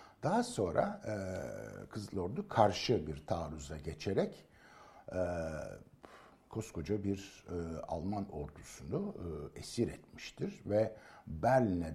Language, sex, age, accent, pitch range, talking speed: Turkish, male, 60-79, native, 80-120 Hz, 100 wpm